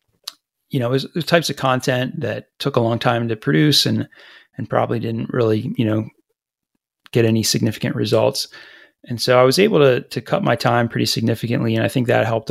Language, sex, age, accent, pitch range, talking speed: English, male, 30-49, American, 110-140 Hz, 195 wpm